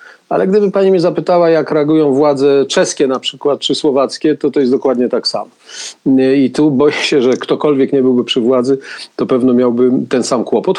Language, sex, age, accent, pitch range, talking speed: Polish, male, 50-69, native, 125-155 Hz, 195 wpm